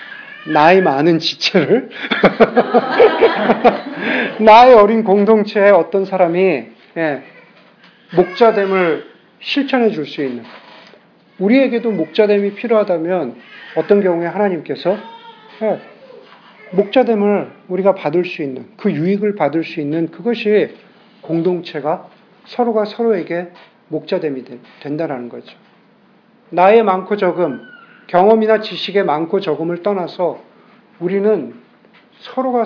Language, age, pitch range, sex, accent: Korean, 40-59, 170-225 Hz, male, native